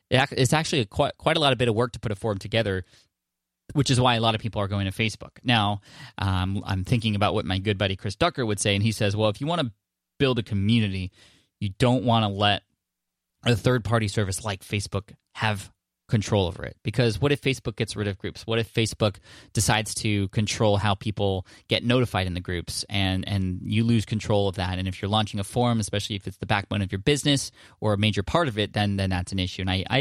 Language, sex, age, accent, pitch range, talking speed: English, male, 20-39, American, 100-115 Hz, 245 wpm